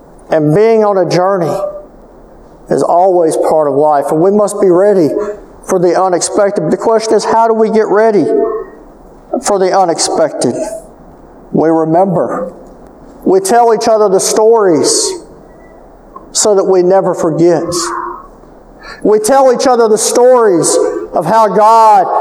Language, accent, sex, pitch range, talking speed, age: English, American, male, 180-240 Hz, 140 wpm, 50-69